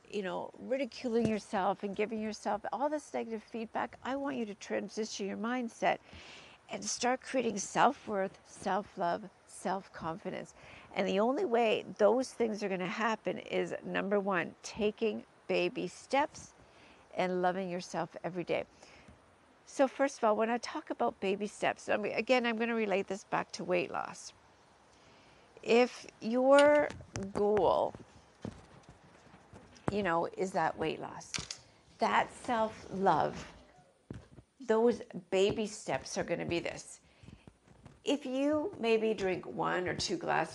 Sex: female